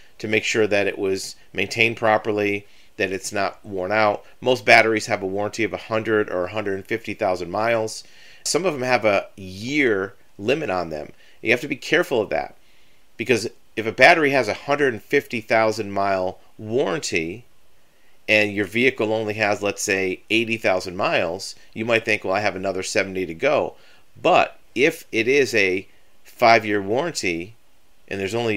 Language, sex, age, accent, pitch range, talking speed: English, male, 40-59, American, 95-110 Hz, 160 wpm